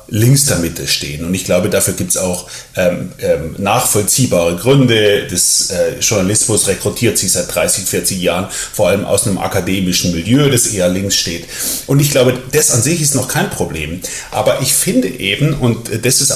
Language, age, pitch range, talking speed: German, 30-49, 110-135 Hz, 185 wpm